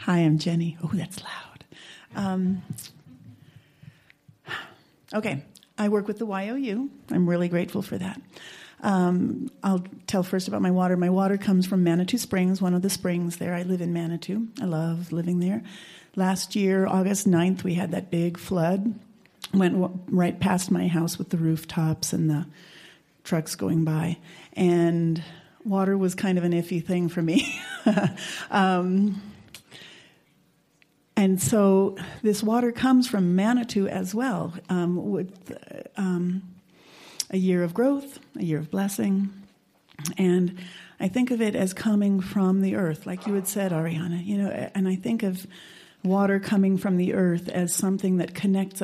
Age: 40-59